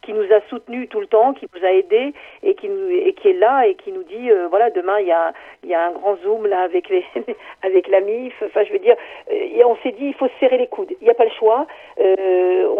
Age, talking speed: 50-69, 290 wpm